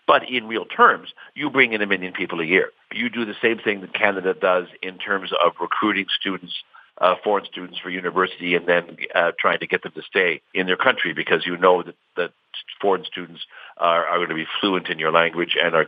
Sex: male